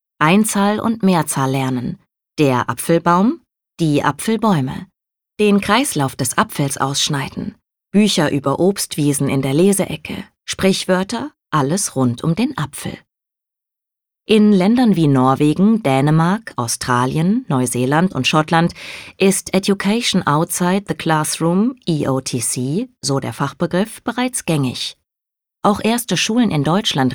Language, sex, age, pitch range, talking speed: German, female, 20-39, 140-200 Hz, 110 wpm